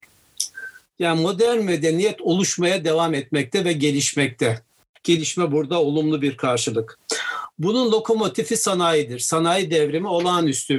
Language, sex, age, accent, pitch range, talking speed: Turkish, male, 60-79, native, 145-180 Hz, 105 wpm